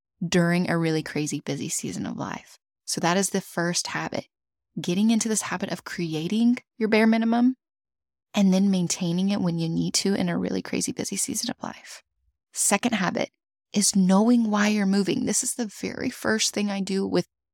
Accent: American